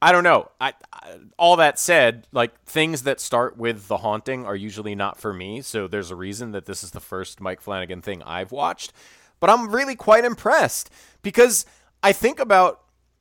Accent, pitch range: American, 95-140 Hz